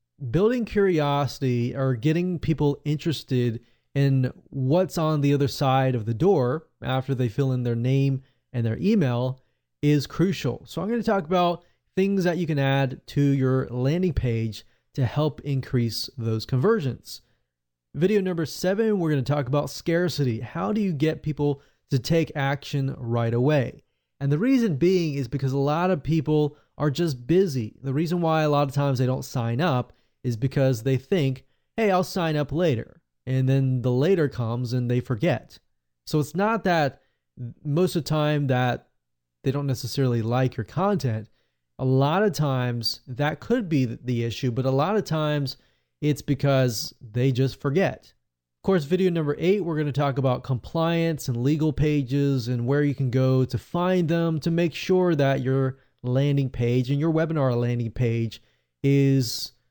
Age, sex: 20-39, male